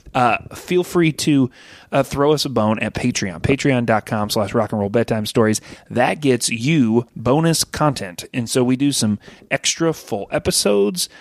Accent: American